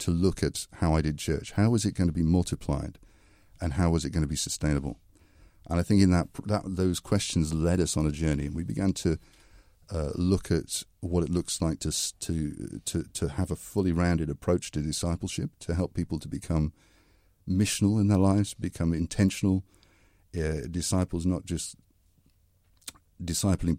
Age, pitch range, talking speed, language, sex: 50-69, 80-95 Hz, 185 wpm, English, male